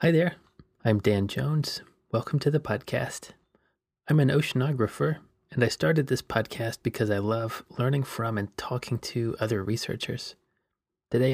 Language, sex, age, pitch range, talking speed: English, male, 30-49, 110-130 Hz, 150 wpm